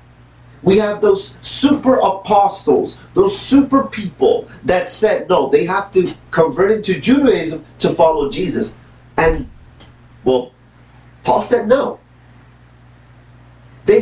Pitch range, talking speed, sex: 120-190 Hz, 110 wpm, male